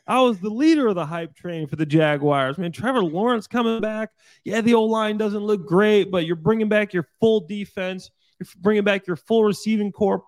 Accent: American